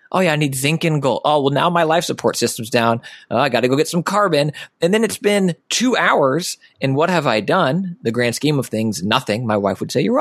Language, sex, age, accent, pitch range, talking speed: English, male, 20-39, American, 115-170 Hz, 265 wpm